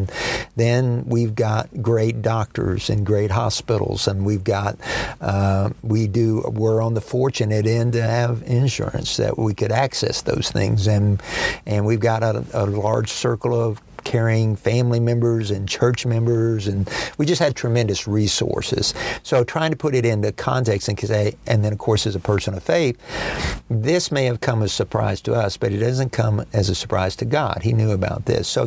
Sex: male